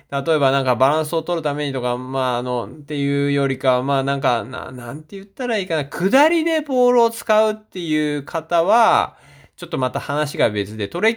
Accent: native